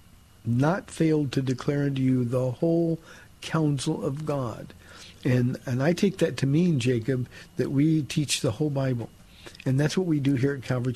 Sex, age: male, 50-69